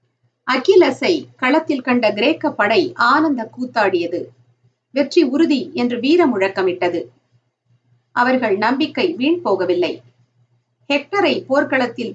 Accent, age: native, 50-69